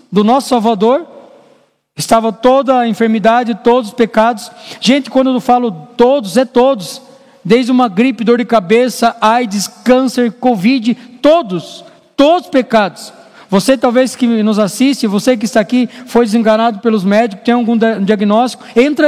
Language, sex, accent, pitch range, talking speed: Portuguese, male, Brazilian, 225-275 Hz, 150 wpm